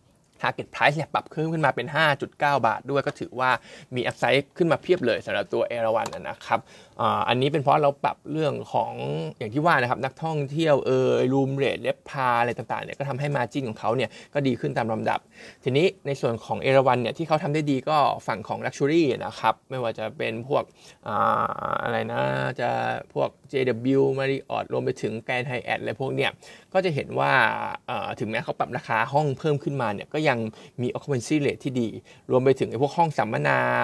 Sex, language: male, Thai